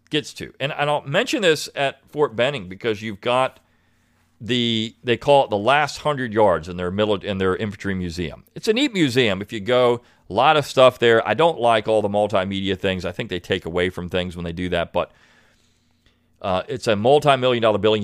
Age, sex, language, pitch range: 40-59, male, English, 95-130 Hz